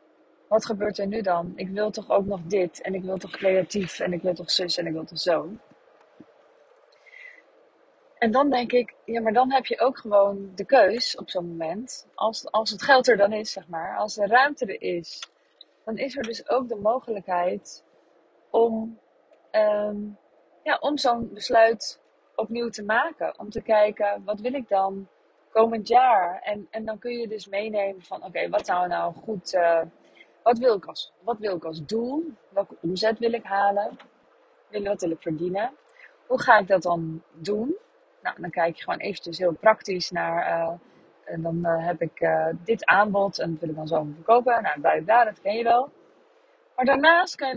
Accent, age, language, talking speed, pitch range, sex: Dutch, 20-39, Dutch, 195 wpm, 180-245 Hz, female